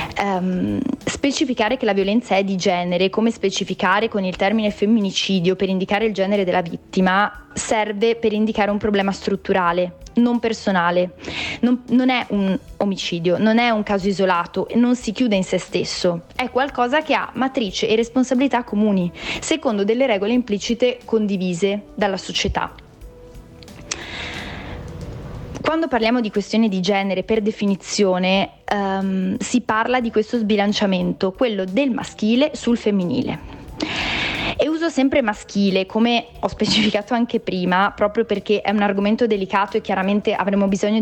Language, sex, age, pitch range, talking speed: Italian, female, 20-39, 195-230 Hz, 140 wpm